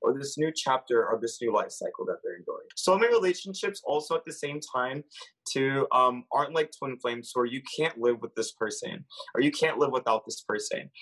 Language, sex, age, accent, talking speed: English, male, 20-39, American, 225 wpm